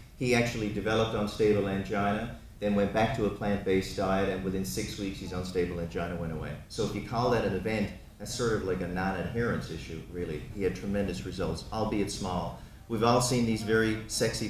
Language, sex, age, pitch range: English, male, 40-59, 95-110 Hz